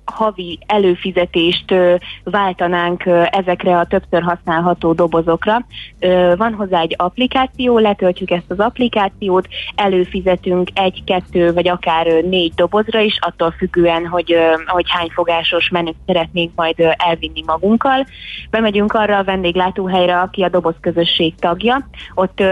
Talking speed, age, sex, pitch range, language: 115 wpm, 20-39, female, 175-200 Hz, Hungarian